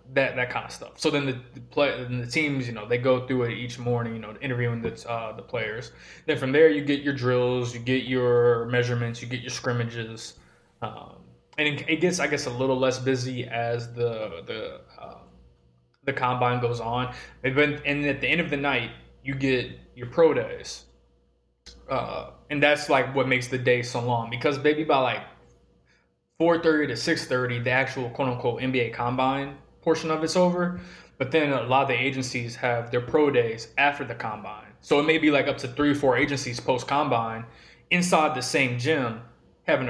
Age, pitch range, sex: 20-39, 120-145 Hz, male